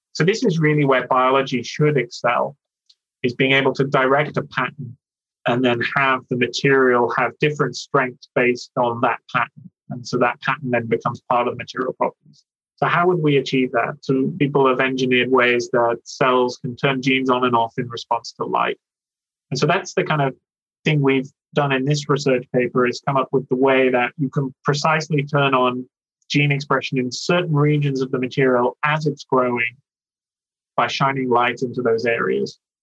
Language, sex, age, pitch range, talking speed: English, male, 30-49, 125-140 Hz, 190 wpm